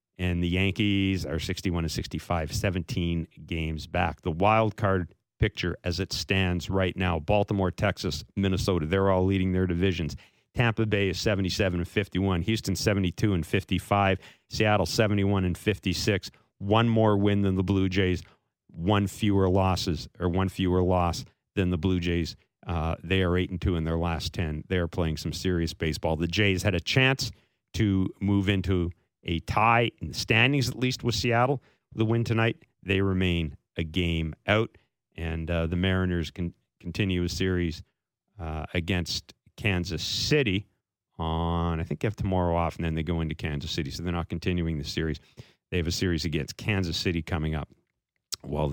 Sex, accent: male, American